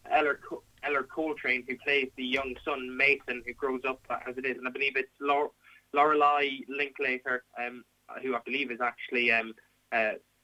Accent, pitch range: Irish, 120-145 Hz